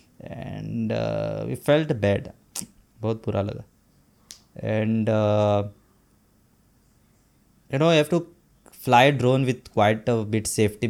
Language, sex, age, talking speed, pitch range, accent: Hindi, male, 20-39, 120 wpm, 110-140 Hz, native